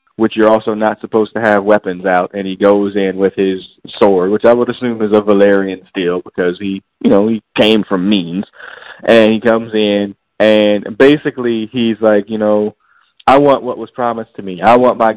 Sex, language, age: male, English, 20-39